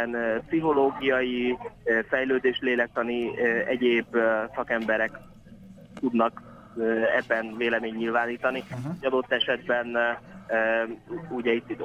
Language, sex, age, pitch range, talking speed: Hungarian, male, 20-39, 115-130 Hz, 65 wpm